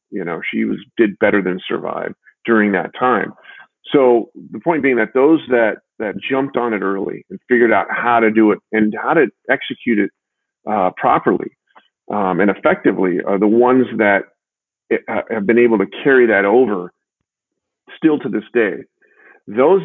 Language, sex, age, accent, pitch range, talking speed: English, male, 40-59, American, 105-130 Hz, 170 wpm